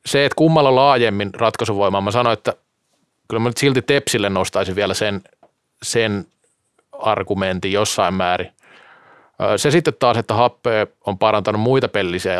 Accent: native